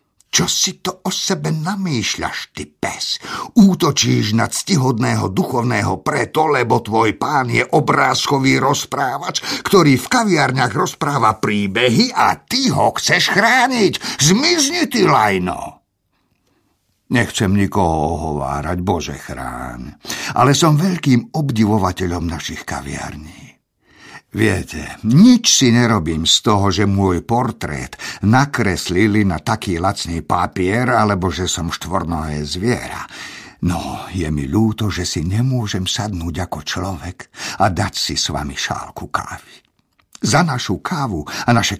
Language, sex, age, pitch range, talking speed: Slovak, male, 50-69, 90-130 Hz, 120 wpm